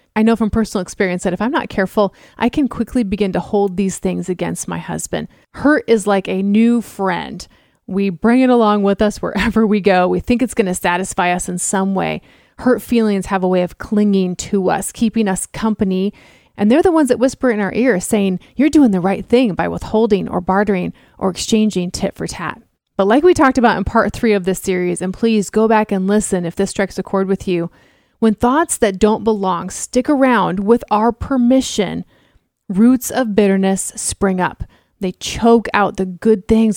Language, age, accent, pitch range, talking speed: English, 30-49, American, 190-230 Hz, 205 wpm